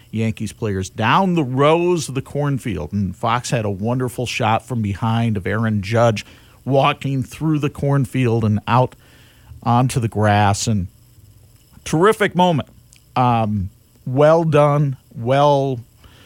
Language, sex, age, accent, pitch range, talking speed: English, male, 50-69, American, 120-165 Hz, 130 wpm